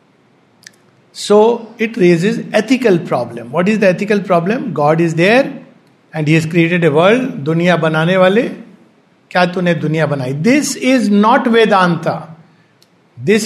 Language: English